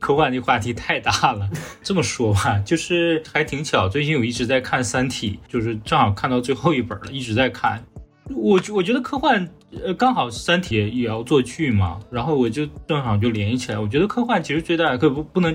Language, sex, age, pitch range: Chinese, male, 20-39, 110-150 Hz